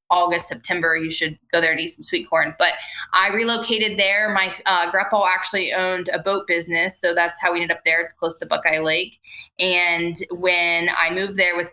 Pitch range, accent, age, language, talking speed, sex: 165-185 Hz, American, 20-39, English, 210 wpm, female